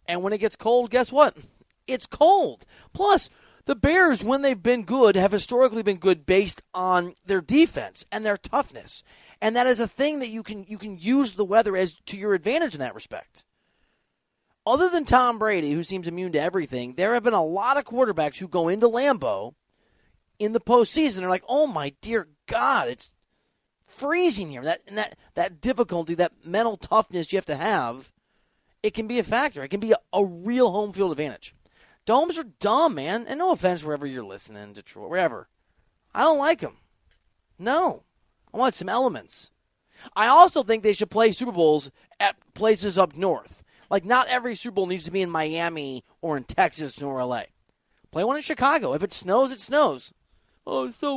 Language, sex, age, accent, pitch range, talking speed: English, male, 30-49, American, 180-255 Hz, 195 wpm